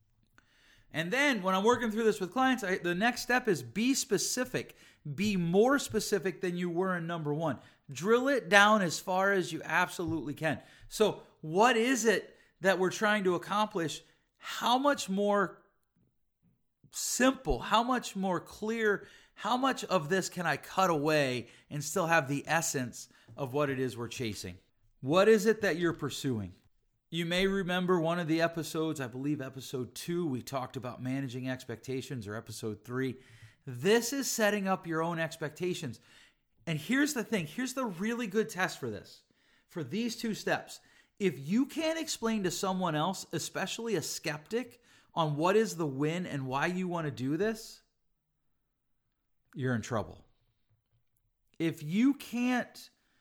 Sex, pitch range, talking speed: male, 135-210 Hz, 160 wpm